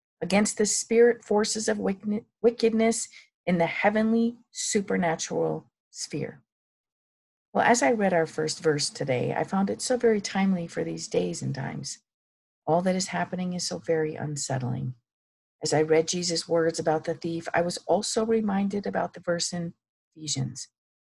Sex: female